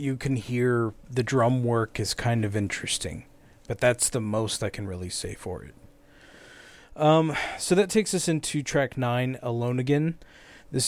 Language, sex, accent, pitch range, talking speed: English, male, American, 115-140 Hz, 170 wpm